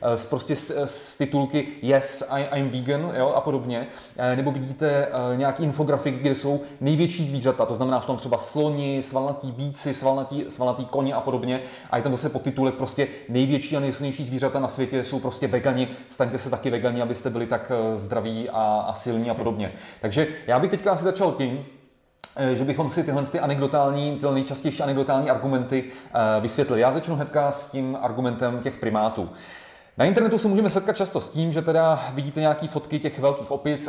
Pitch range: 130-145 Hz